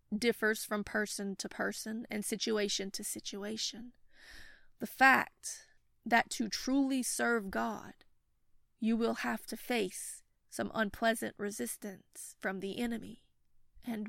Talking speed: 120 wpm